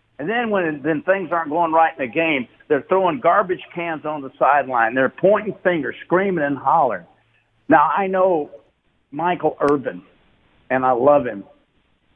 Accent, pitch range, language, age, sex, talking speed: American, 140-175 Hz, English, 60-79, male, 165 wpm